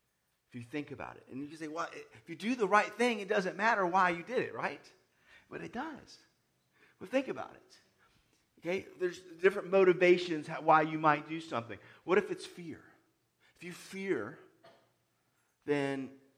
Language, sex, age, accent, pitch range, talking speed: English, male, 40-59, American, 120-180 Hz, 175 wpm